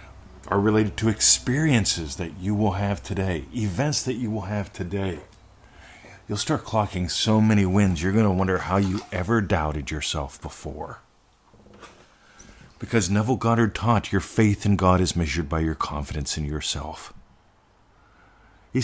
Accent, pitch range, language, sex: American, 85-105 Hz, English, male